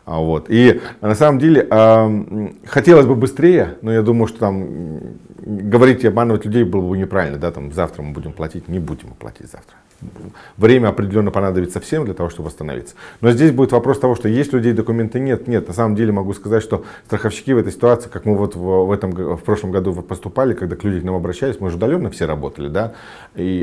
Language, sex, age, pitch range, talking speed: Russian, male, 40-59, 90-120 Hz, 205 wpm